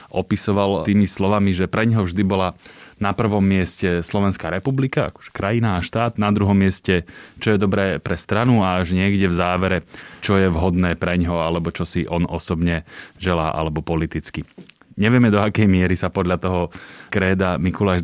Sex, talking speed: male, 170 wpm